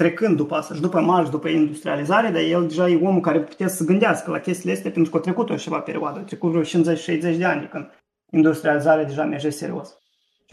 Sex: male